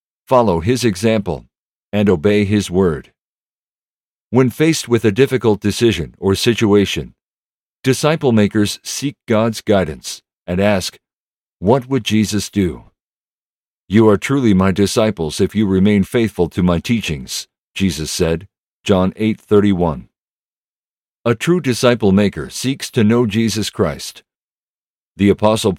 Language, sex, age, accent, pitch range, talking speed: English, male, 50-69, American, 95-120 Hz, 120 wpm